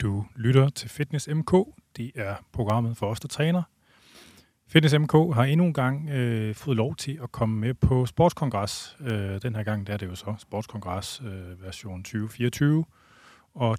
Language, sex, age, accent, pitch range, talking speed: Danish, male, 30-49, native, 100-130 Hz, 180 wpm